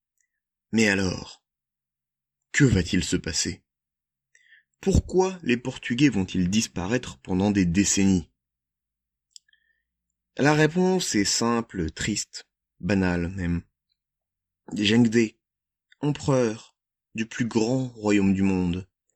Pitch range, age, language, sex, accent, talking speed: 90-130 Hz, 30-49, French, male, French, 90 wpm